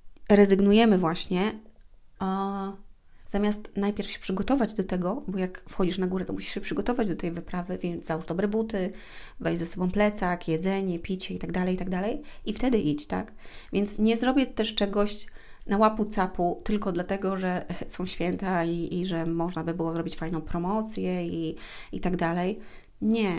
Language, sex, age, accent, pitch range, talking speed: Polish, female, 30-49, native, 180-205 Hz, 170 wpm